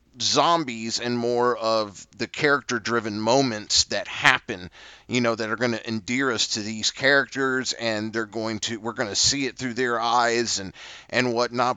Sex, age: male, 30-49